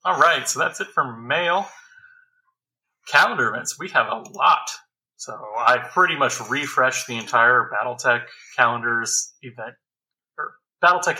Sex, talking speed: male, 135 wpm